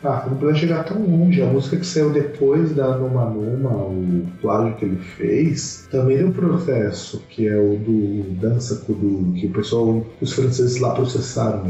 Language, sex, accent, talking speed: Portuguese, male, Brazilian, 195 wpm